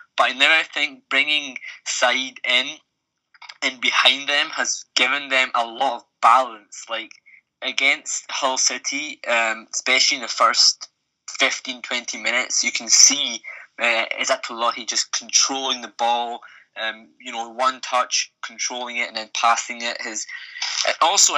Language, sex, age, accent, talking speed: English, male, 20-39, British, 140 wpm